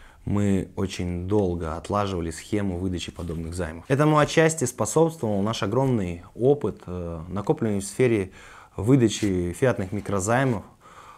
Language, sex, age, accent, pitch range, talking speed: Russian, male, 20-39, native, 90-115 Hz, 105 wpm